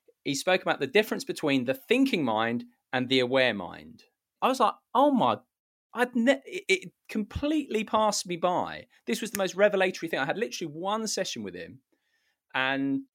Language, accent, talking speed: English, British, 180 wpm